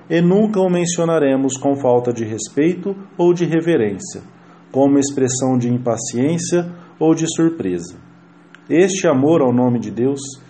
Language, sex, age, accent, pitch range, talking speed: English, male, 40-59, Brazilian, 125-170 Hz, 135 wpm